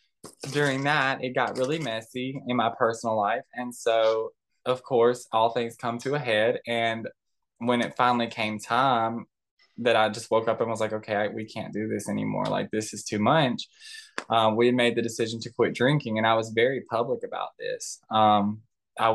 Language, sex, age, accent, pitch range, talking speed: English, male, 10-29, American, 110-130 Hz, 195 wpm